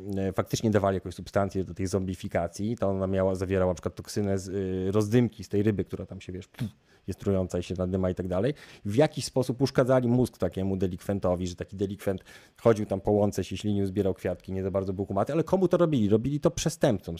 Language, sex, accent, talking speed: Polish, male, native, 215 wpm